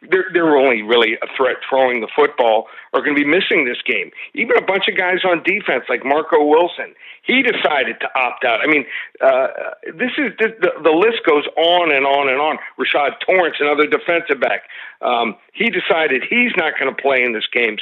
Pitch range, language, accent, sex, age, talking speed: 145-200 Hz, English, American, male, 50-69, 210 wpm